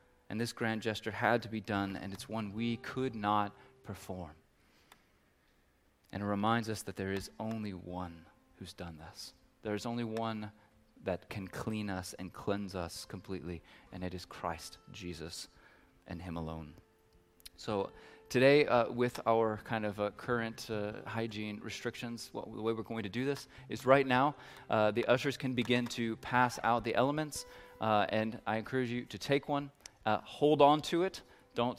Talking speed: 175 wpm